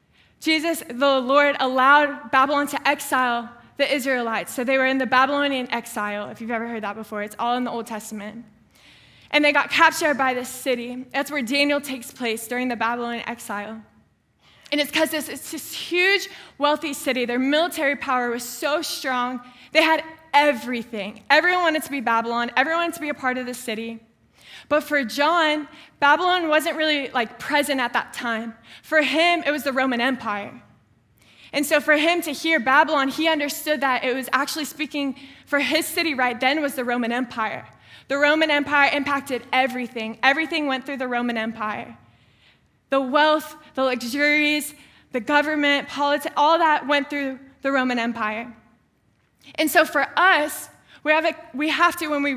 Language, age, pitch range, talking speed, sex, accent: English, 10-29, 245-300 Hz, 175 wpm, female, American